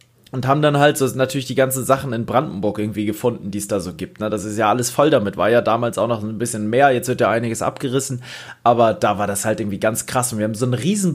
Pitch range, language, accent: 115-140 Hz, German, German